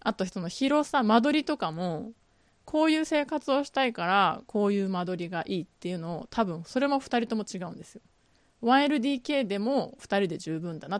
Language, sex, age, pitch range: Japanese, female, 20-39, 185-260 Hz